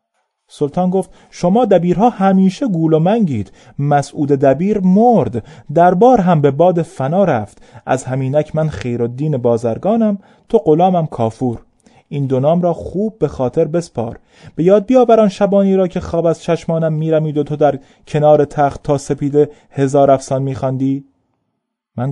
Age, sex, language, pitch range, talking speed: 30-49, male, Persian, 120-160 Hz, 145 wpm